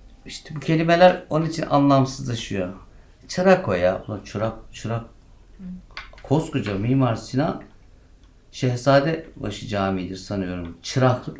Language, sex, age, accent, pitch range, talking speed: Turkish, male, 60-79, native, 100-155 Hz, 90 wpm